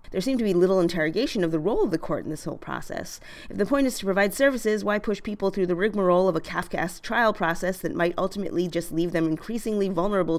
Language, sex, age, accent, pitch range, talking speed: English, female, 30-49, American, 160-200 Hz, 245 wpm